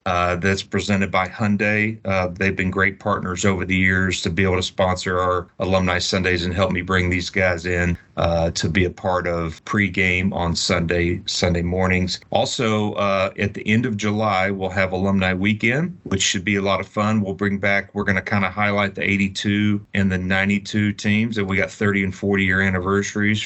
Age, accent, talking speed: 40-59, American, 200 wpm